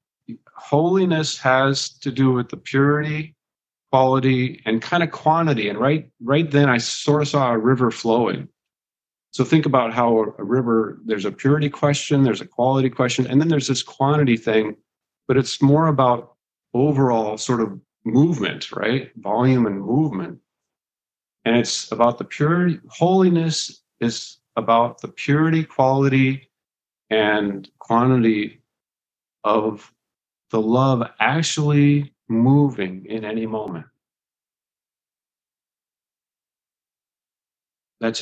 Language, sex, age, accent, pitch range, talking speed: English, male, 50-69, American, 115-145 Hz, 120 wpm